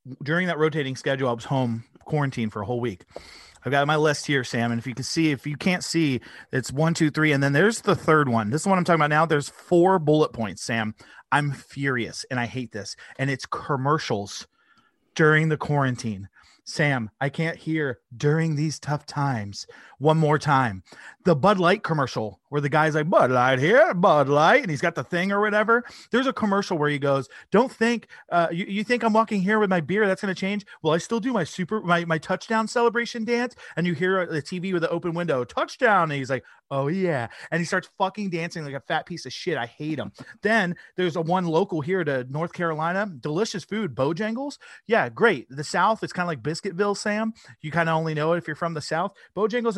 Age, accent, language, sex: 30-49, American, English, male